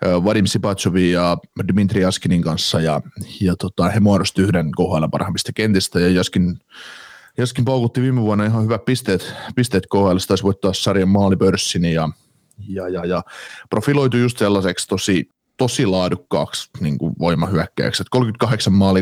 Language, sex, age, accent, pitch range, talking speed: Finnish, male, 30-49, native, 95-115 Hz, 140 wpm